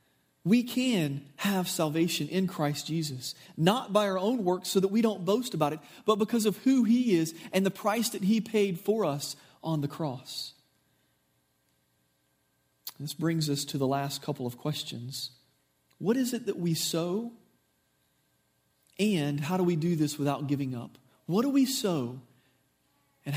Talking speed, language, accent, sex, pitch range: 165 wpm, English, American, male, 135-180 Hz